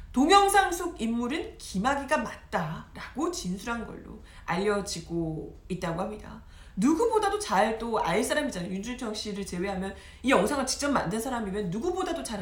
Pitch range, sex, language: 205-330 Hz, female, Korean